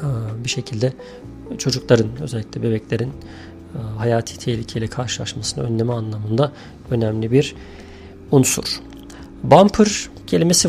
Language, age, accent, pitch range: Turkish, 40-59, native, 115-135 Hz